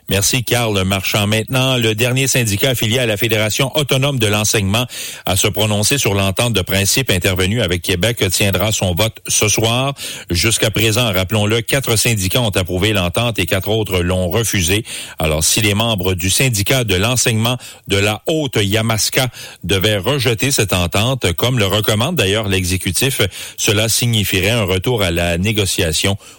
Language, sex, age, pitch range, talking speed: English, male, 40-59, 95-125 Hz, 160 wpm